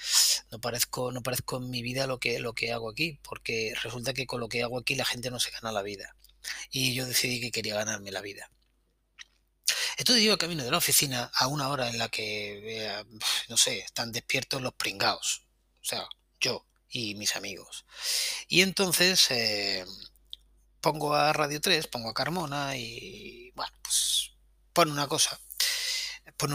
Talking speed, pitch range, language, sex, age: 175 wpm, 115-155 Hz, Spanish, male, 30-49